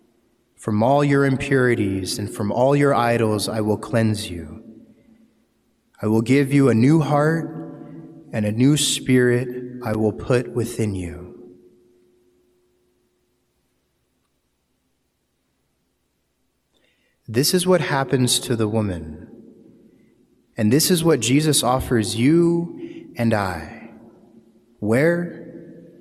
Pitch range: 115-135 Hz